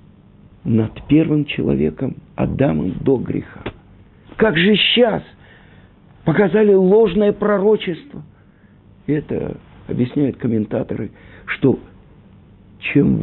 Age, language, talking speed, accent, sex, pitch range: 50-69, Russian, 75 wpm, native, male, 120-195 Hz